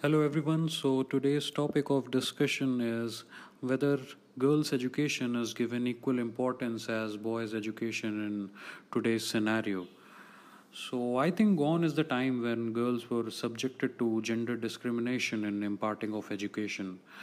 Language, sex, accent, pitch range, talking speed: English, male, Indian, 115-135 Hz, 135 wpm